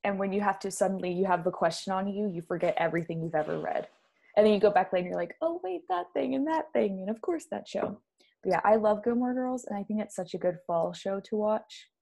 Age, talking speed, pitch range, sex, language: 20-39, 285 wpm, 180-220 Hz, female, English